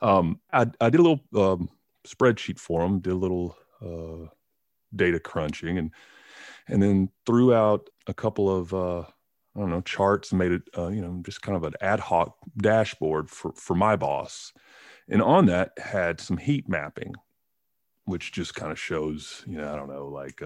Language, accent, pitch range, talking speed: English, American, 80-105 Hz, 185 wpm